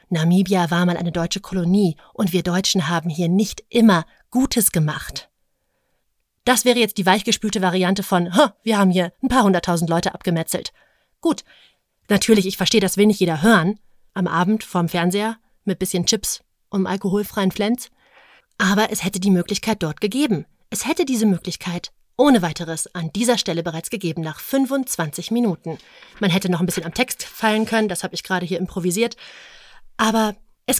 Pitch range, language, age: 180-235 Hz, English, 30-49